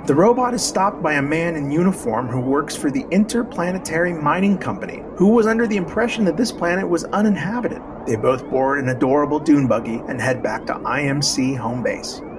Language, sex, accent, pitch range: English, male, American, 140-190 Hz